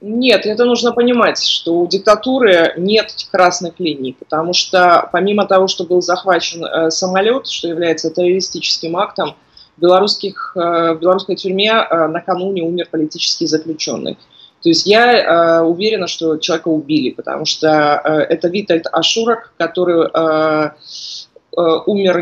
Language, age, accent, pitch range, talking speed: Ukrainian, 20-39, native, 160-195 Hz, 135 wpm